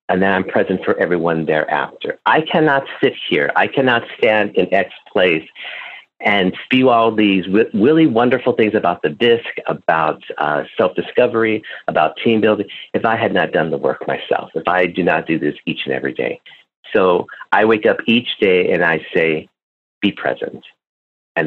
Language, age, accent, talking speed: English, 50-69, American, 175 wpm